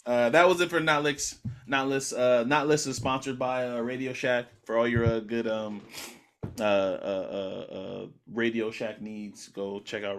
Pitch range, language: 115-135 Hz, English